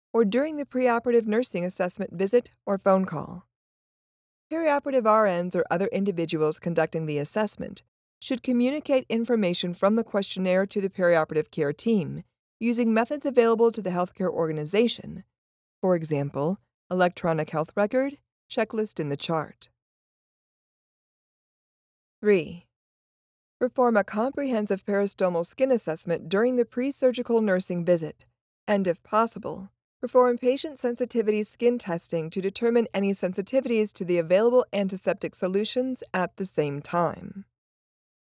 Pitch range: 170-240 Hz